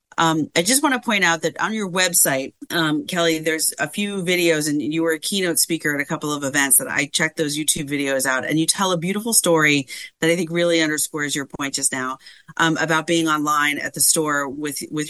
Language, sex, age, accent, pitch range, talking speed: English, female, 40-59, American, 145-170 Hz, 235 wpm